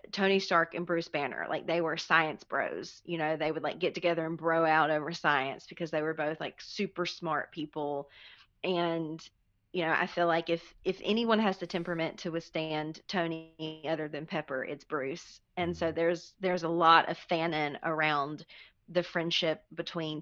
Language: English